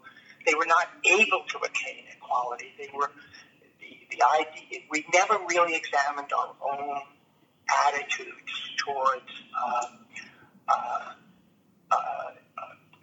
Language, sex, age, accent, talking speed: English, male, 50-69, American, 110 wpm